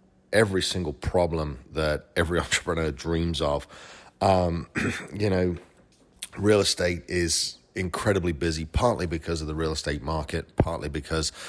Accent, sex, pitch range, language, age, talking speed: British, male, 75-90 Hz, English, 30-49, 130 wpm